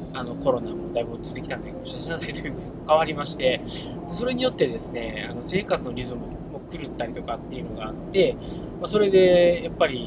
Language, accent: Japanese, native